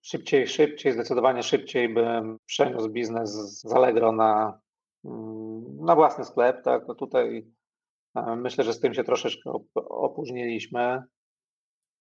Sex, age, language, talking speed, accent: male, 40-59, Polish, 120 wpm, native